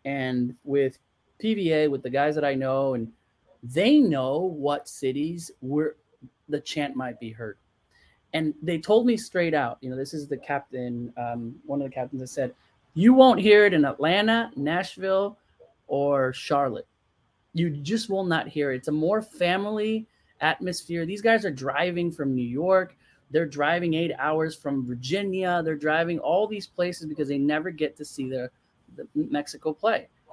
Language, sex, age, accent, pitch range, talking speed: English, male, 30-49, American, 140-200 Hz, 170 wpm